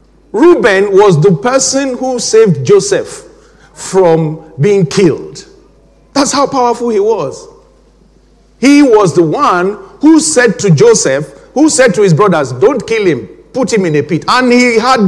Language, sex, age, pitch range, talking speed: English, male, 50-69, 170-250 Hz, 155 wpm